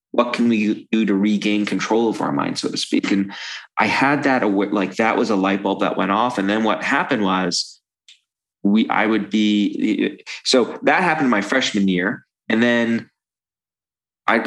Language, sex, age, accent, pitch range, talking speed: English, male, 30-49, American, 100-130 Hz, 185 wpm